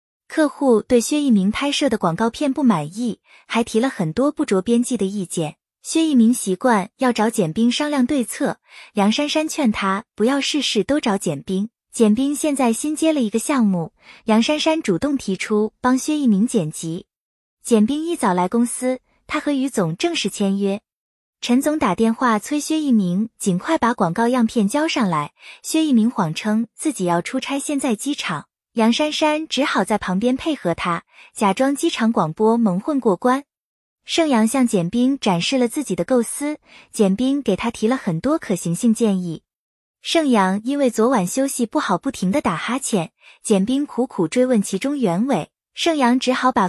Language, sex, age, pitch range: Chinese, female, 20-39, 205-280 Hz